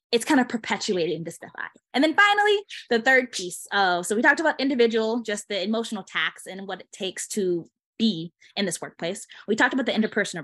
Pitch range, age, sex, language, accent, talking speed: 185-245 Hz, 20-39, female, English, American, 205 wpm